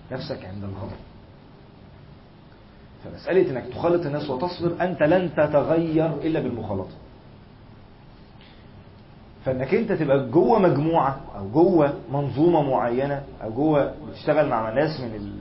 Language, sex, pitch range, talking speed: Arabic, male, 120-180 Hz, 105 wpm